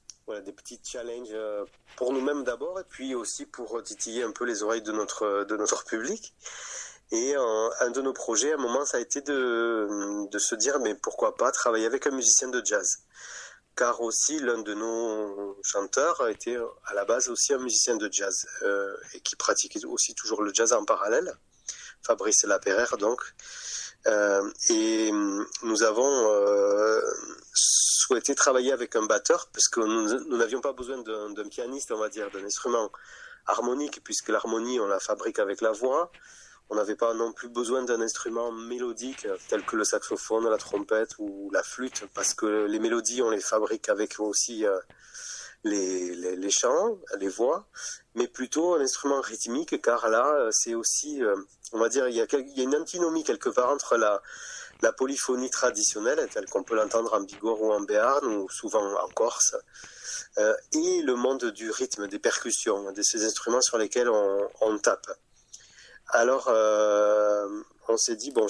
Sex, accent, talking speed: male, French, 180 wpm